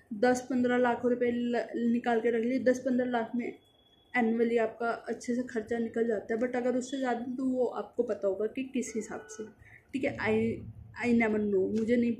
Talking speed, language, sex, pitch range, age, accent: 200 wpm, Hindi, female, 230-265 Hz, 20-39, native